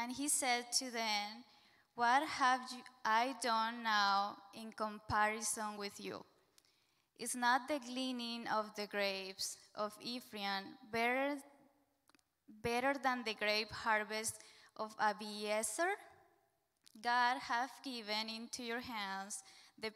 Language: English